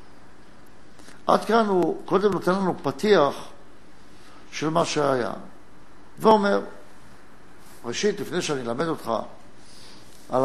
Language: Hebrew